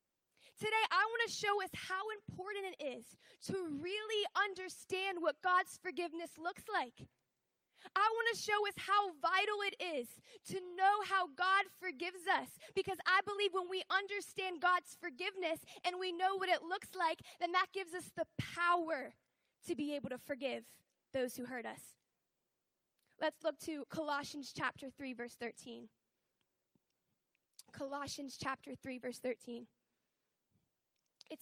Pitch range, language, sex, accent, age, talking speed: 275-375 Hz, English, female, American, 10-29, 145 wpm